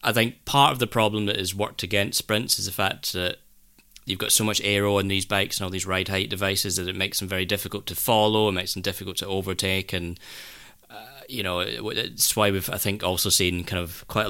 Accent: British